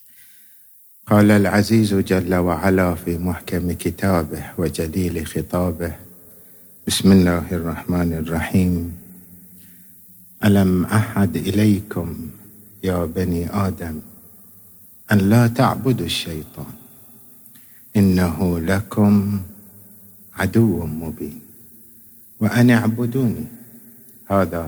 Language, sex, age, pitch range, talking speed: Arabic, male, 50-69, 90-110 Hz, 75 wpm